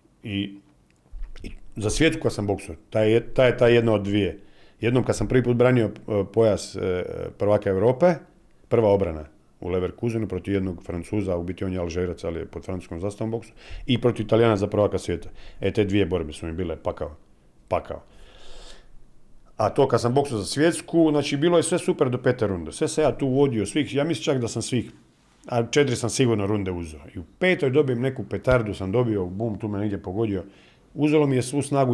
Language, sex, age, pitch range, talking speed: Croatian, male, 40-59, 95-135 Hz, 205 wpm